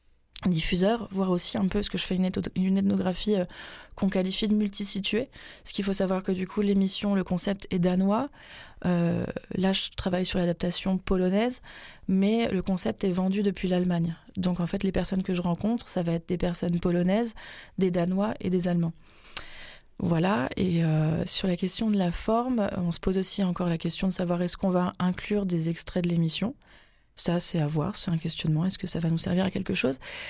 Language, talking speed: French, 205 wpm